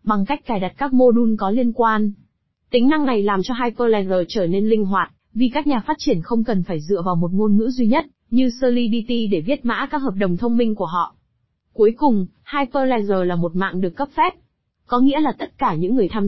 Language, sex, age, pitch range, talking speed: Vietnamese, female, 20-39, 195-255 Hz, 235 wpm